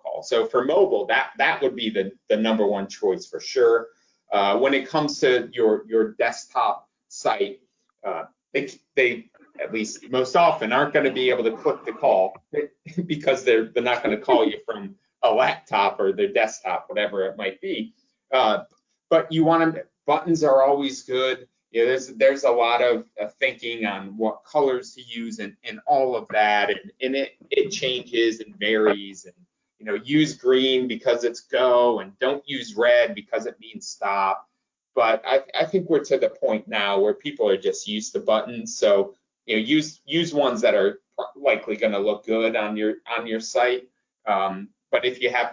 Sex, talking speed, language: male, 195 wpm, English